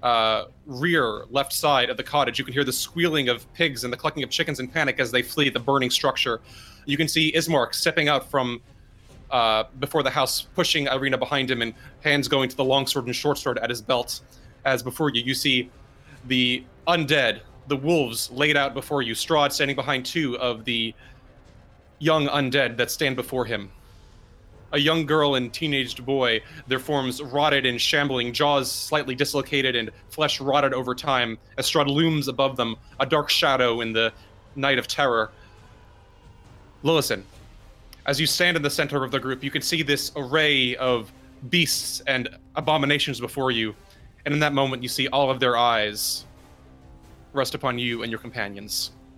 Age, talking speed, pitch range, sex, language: 30-49, 180 wpm, 120-145 Hz, male, English